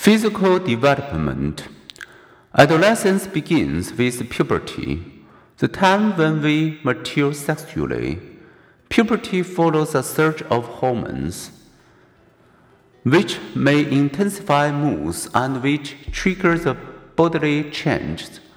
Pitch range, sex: 125-170 Hz, male